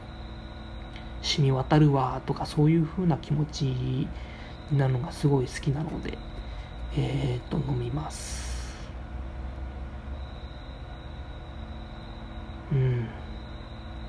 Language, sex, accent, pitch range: Japanese, male, native, 105-150 Hz